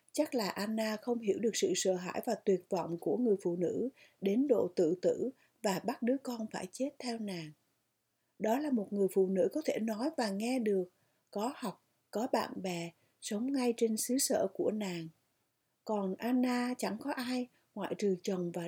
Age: 60-79